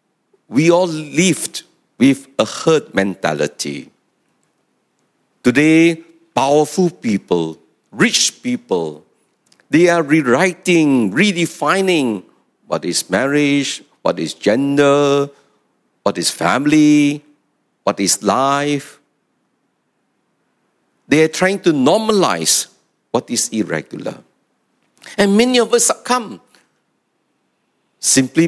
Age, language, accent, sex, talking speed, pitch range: 50-69, English, Malaysian, male, 90 wpm, 135-175 Hz